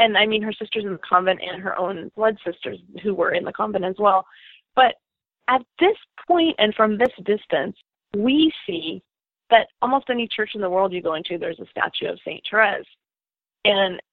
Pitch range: 180-235 Hz